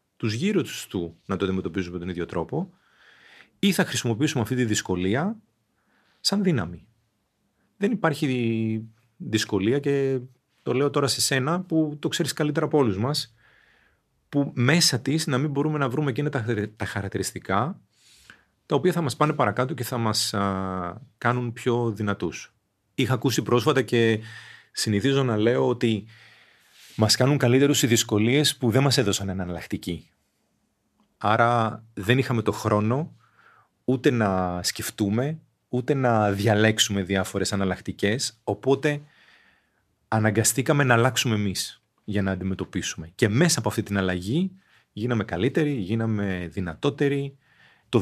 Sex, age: male, 40-59